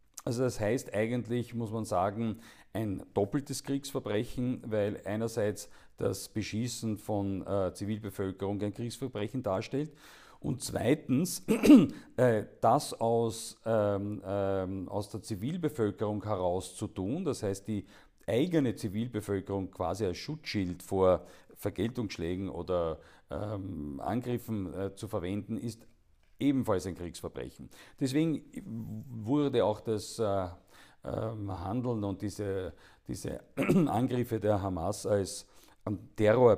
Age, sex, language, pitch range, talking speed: 50-69, male, German, 95-115 Hz, 105 wpm